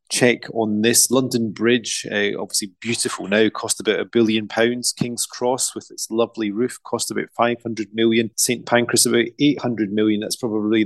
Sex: male